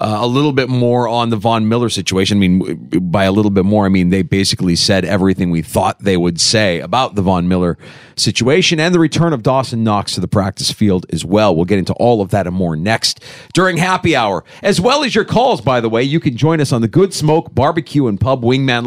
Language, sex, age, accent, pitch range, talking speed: English, male, 40-59, American, 110-160 Hz, 245 wpm